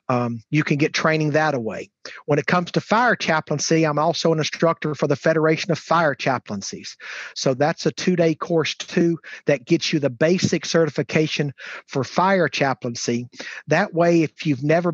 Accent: American